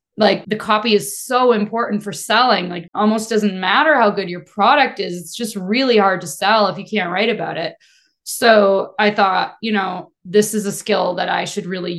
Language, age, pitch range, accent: English, 20-39, 200-250 Hz, American